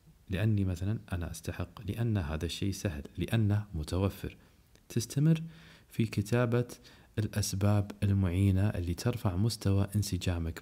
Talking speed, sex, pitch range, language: 105 wpm, male, 85-110 Hz, Arabic